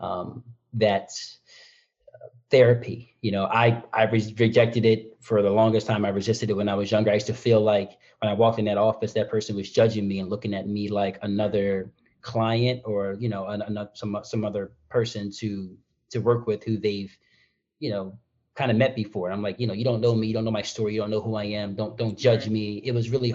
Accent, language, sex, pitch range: American, English, male, 105-120 Hz